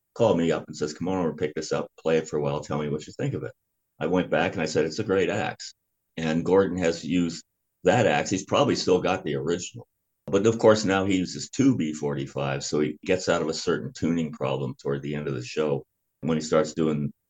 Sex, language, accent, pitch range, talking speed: male, English, American, 75-105 Hz, 245 wpm